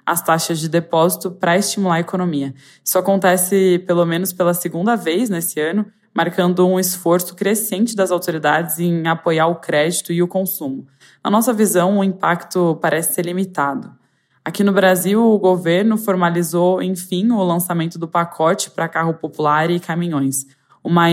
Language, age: Portuguese, 20-39